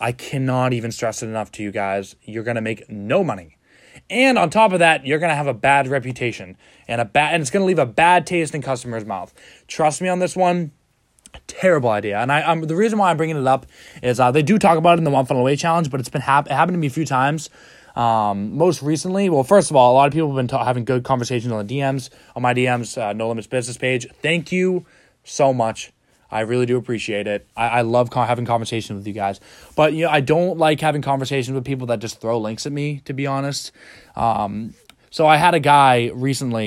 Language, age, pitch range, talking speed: English, 20-39, 115-160 Hz, 245 wpm